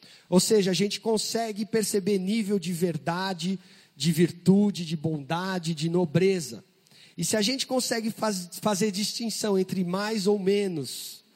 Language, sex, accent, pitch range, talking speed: Portuguese, male, Brazilian, 170-205 Hz, 135 wpm